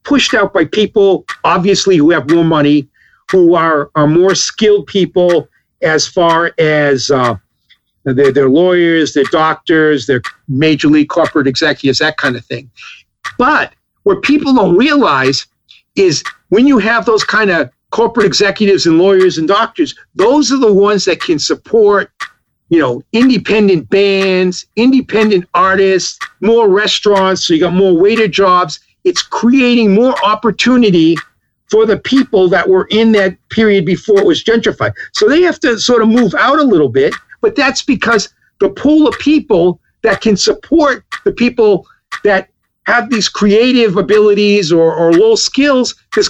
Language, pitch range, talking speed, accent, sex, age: English, 180-245 Hz, 155 wpm, American, male, 50-69